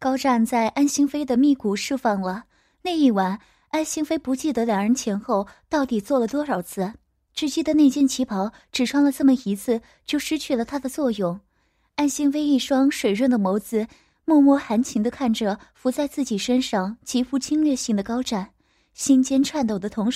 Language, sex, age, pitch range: Chinese, female, 20-39, 215-285 Hz